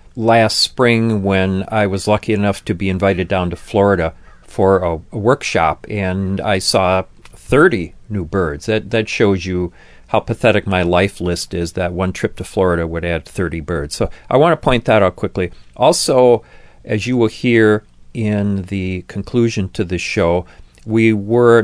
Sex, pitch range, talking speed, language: male, 95-115 Hz, 175 wpm, English